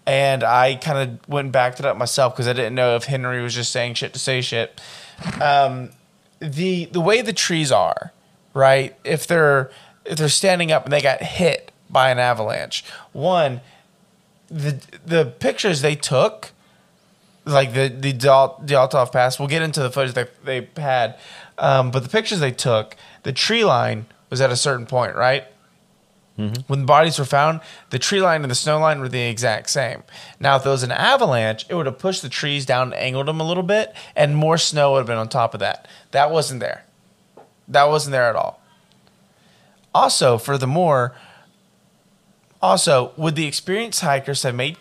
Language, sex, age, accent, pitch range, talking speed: English, male, 20-39, American, 130-160 Hz, 185 wpm